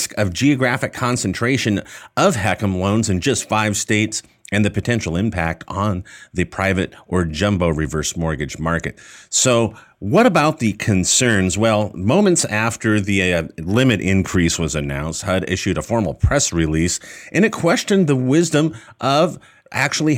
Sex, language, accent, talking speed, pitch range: male, English, American, 145 wpm, 90-125 Hz